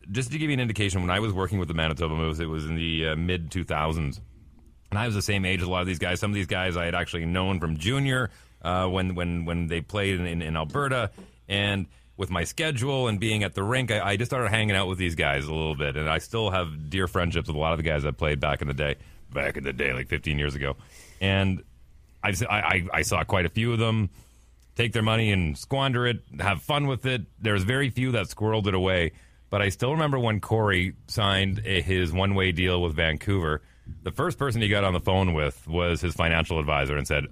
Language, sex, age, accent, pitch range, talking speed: English, male, 30-49, American, 80-110 Hz, 245 wpm